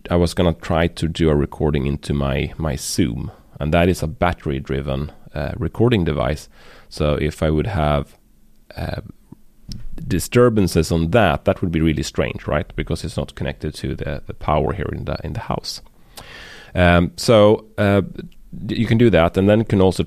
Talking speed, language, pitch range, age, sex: 185 wpm, English, 75-95 Hz, 30-49, male